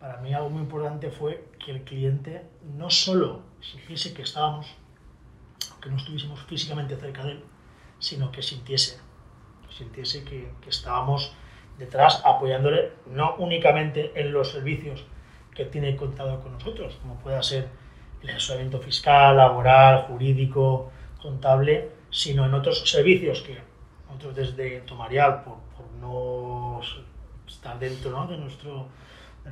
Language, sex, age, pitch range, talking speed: Spanish, male, 30-49, 130-145 Hz, 135 wpm